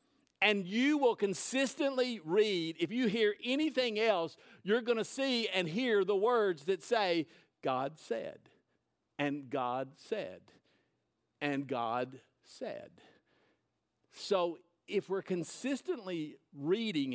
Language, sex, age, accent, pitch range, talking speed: English, male, 50-69, American, 150-240 Hz, 115 wpm